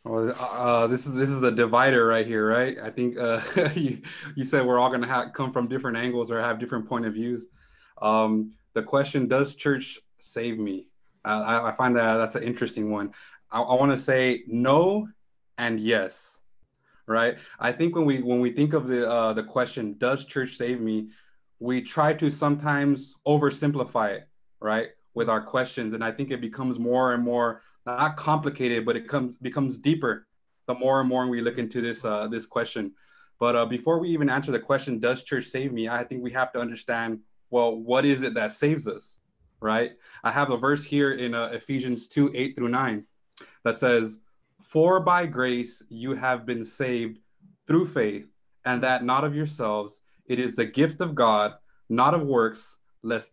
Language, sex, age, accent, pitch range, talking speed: English, male, 20-39, American, 115-135 Hz, 195 wpm